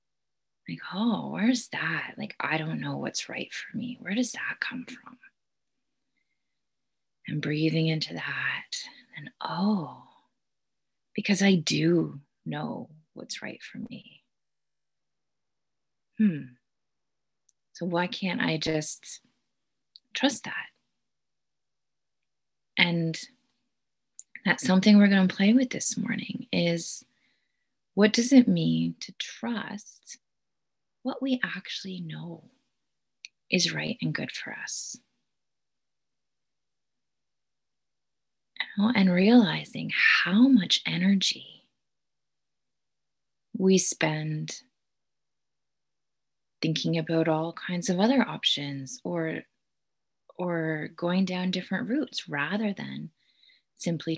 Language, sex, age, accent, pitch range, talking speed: English, female, 30-49, American, 160-230 Hz, 100 wpm